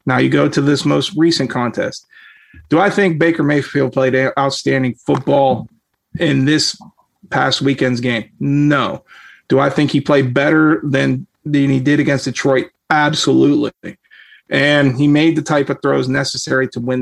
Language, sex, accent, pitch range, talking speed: English, male, American, 140-175 Hz, 160 wpm